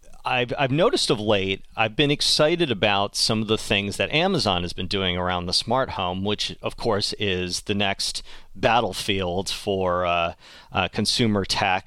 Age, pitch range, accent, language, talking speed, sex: 30-49, 95-125 Hz, American, English, 170 wpm, male